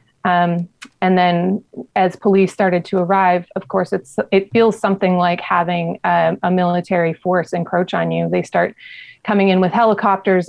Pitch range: 170-195 Hz